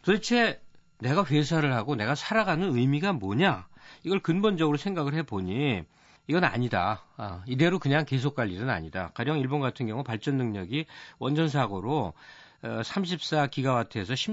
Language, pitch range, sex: Korean, 105-155 Hz, male